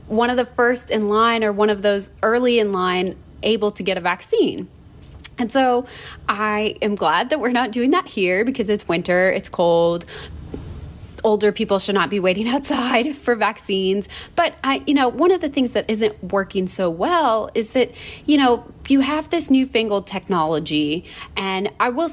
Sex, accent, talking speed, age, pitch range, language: female, American, 185 wpm, 20-39, 195-255 Hz, English